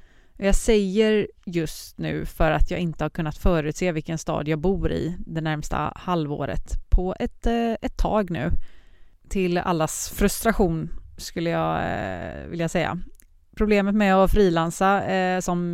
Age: 30-49